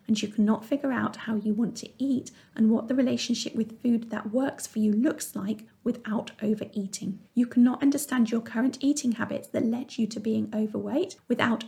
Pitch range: 220-270 Hz